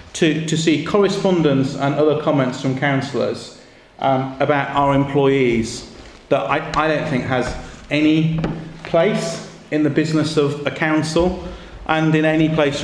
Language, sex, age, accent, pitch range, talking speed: English, male, 40-59, British, 130-160 Hz, 145 wpm